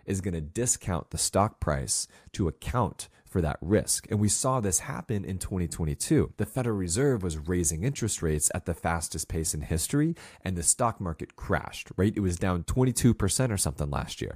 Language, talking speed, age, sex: English, 190 wpm, 30-49, male